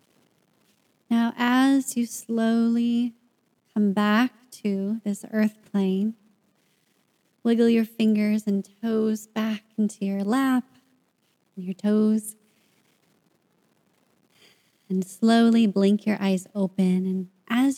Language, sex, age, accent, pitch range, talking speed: English, female, 30-49, American, 200-240 Hz, 100 wpm